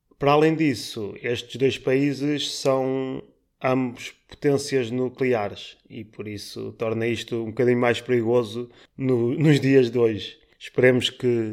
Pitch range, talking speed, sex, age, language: 115-135 Hz, 130 wpm, male, 20-39, Portuguese